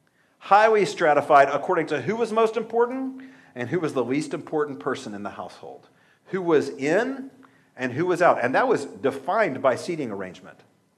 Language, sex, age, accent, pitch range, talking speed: English, male, 50-69, American, 135-200 Hz, 175 wpm